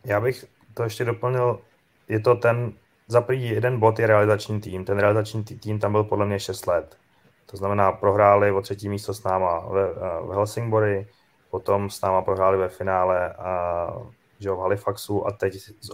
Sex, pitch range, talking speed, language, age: male, 95-105 Hz, 165 wpm, Czech, 20-39